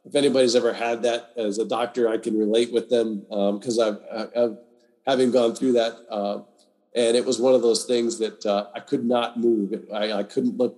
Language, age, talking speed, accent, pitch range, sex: English, 40-59, 215 wpm, American, 105-120 Hz, male